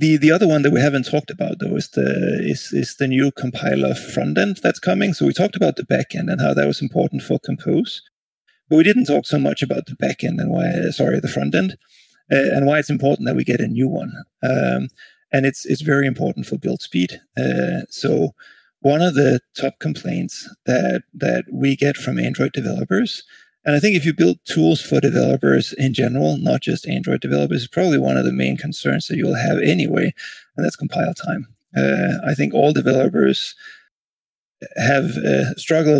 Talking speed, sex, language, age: 195 wpm, male, English, 30-49